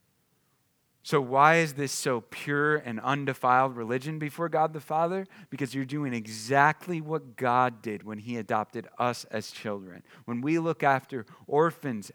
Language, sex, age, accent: English, male, 40-59, American